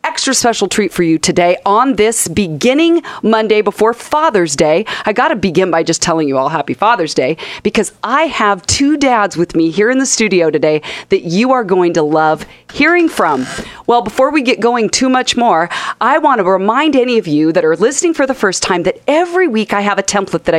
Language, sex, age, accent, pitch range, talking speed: English, female, 40-59, American, 180-260 Hz, 220 wpm